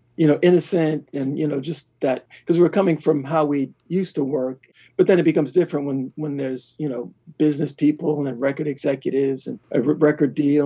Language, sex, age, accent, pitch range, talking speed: English, male, 50-69, American, 130-155 Hz, 210 wpm